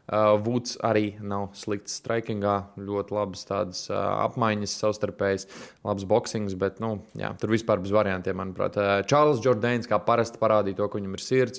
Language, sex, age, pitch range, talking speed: English, male, 20-39, 100-115 Hz, 170 wpm